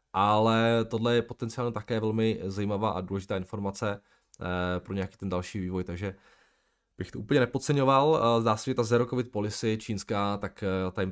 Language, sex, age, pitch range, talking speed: Czech, male, 20-39, 90-110 Hz, 165 wpm